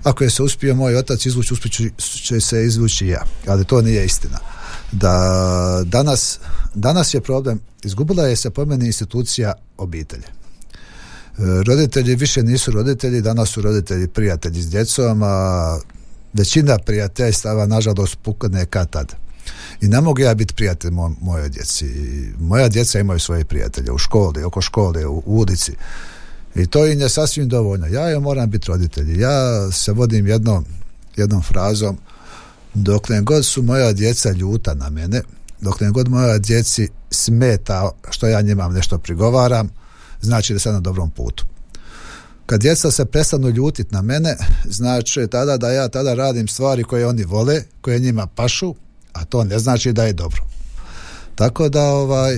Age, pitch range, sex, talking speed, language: 50-69, 95-125 Hz, male, 155 wpm, Croatian